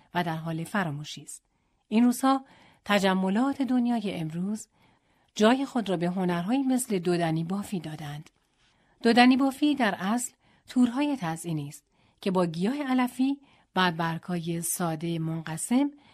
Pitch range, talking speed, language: 165-245 Hz, 130 wpm, Persian